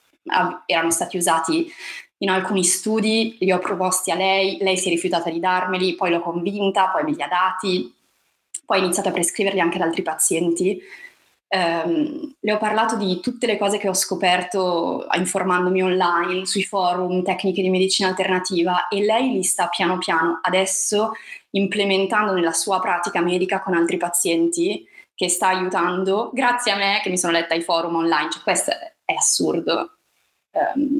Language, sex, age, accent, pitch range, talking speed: Italian, female, 20-39, native, 170-195 Hz, 165 wpm